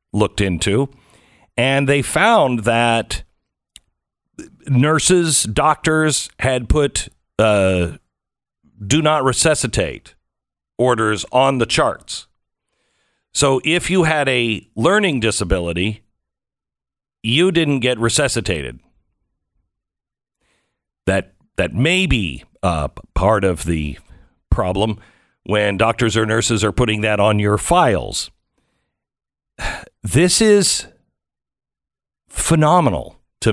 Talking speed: 95 wpm